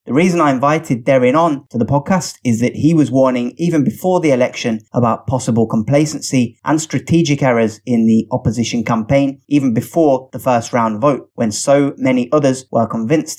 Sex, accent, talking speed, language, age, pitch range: male, British, 180 wpm, English, 20-39, 115-145 Hz